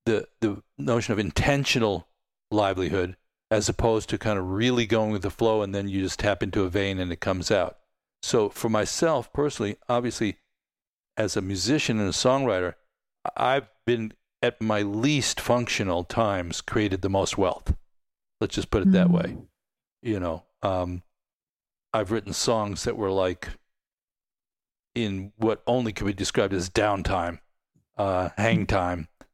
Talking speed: 155 wpm